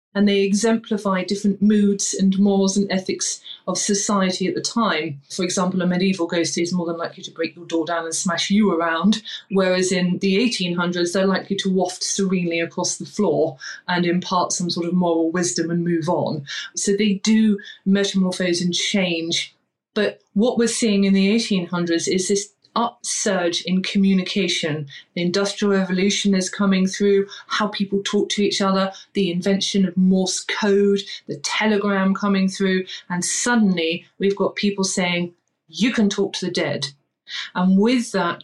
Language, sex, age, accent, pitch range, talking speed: English, female, 30-49, British, 175-200 Hz, 170 wpm